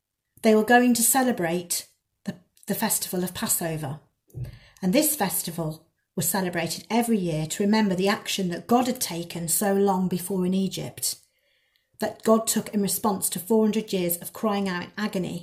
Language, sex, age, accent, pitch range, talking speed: English, female, 40-59, British, 175-225 Hz, 165 wpm